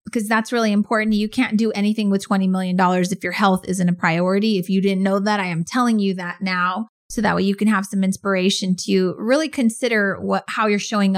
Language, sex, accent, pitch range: English, female, American, 195-235 Hz